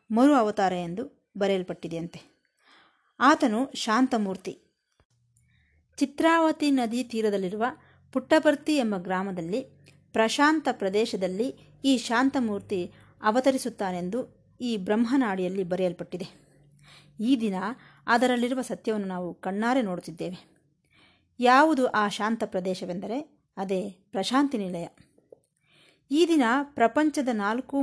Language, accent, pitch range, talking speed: Kannada, native, 185-255 Hz, 80 wpm